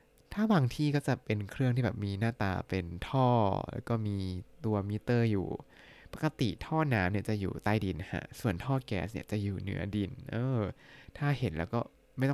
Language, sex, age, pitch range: Thai, male, 20-39, 110-150 Hz